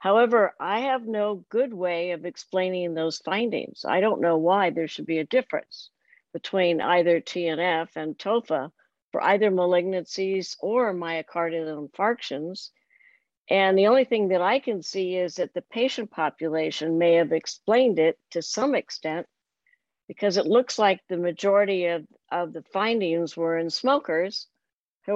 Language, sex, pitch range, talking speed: English, female, 170-210 Hz, 155 wpm